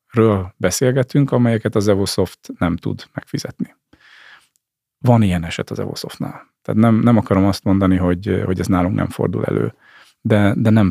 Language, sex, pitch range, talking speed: Hungarian, male, 95-120 Hz, 160 wpm